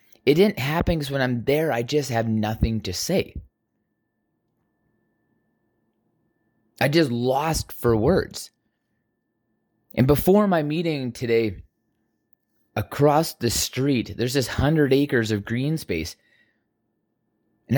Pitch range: 110-145 Hz